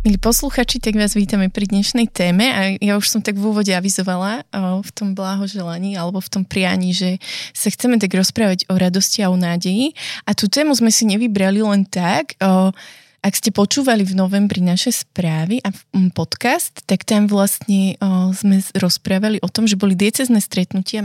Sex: female